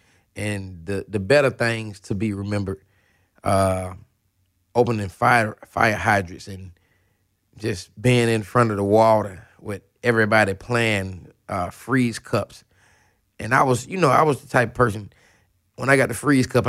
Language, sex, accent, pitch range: English, male, American, 95-120 Hz